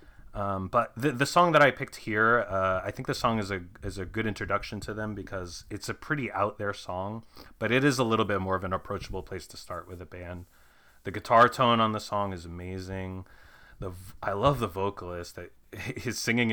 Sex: male